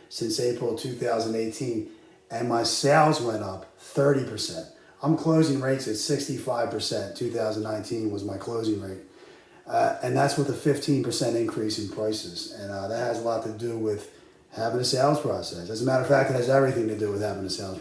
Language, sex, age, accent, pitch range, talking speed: English, male, 30-49, American, 110-135 Hz, 185 wpm